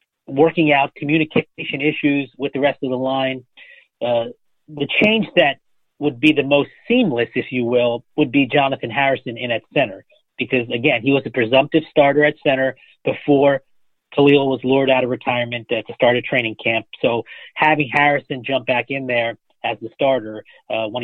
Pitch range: 120-150 Hz